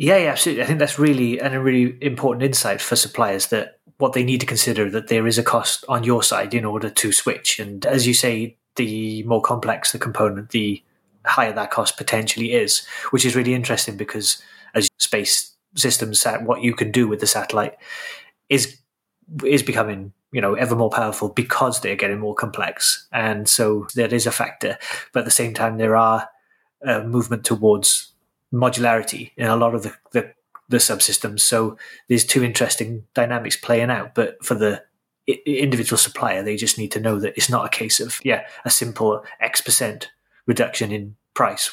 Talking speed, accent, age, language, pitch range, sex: 190 wpm, British, 30-49, English, 110-130 Hz, male